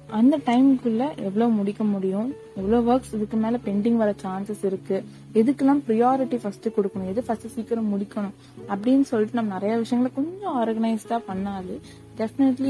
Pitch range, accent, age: 195-230 Hz, native, 20-39